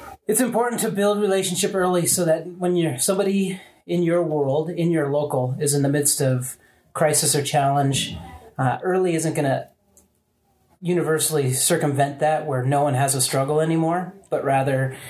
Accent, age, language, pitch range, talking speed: American, 30-49, English, 135-175 Hz, 165 wpm